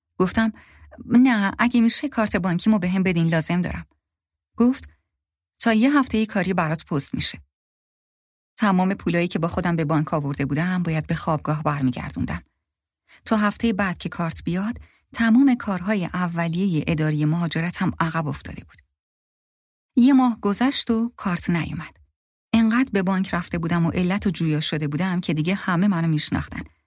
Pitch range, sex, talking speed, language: 145-200 Hz, female, 160 wpm, Persian